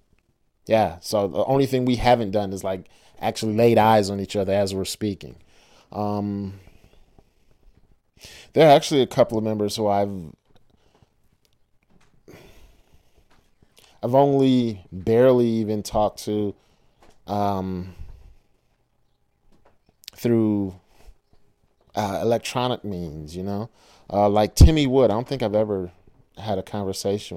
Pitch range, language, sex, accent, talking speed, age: 90-115 Hz, English, male, American, 120 wpm, 30-49